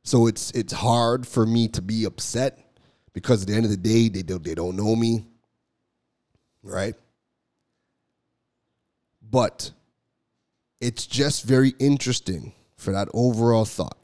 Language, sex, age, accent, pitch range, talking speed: English, male, 30-49, American, 105-135 Hz, 130 wpm